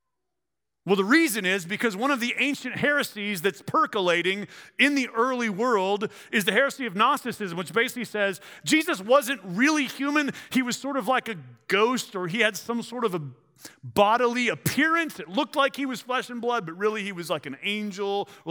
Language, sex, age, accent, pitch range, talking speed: English, male, 40-59, American, 185-245 Hz, 195 wpm